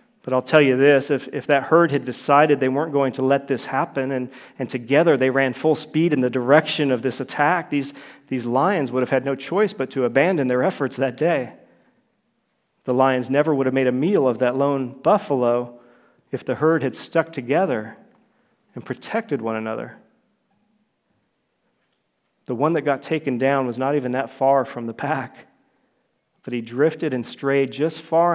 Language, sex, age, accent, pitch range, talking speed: English, male, 40-59, American, 130-145 Hz, 190 wpm